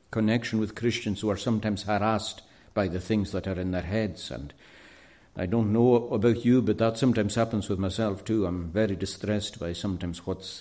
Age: 60-79